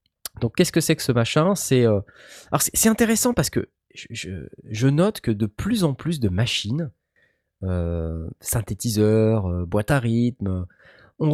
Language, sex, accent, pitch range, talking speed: French, male, French, 105-170 Hz, 170 wpm